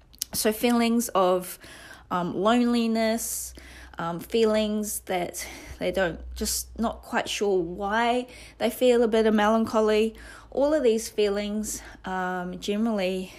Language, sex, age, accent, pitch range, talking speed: English, female, 20-39, Australian, 175-220 Hz, 120 wpm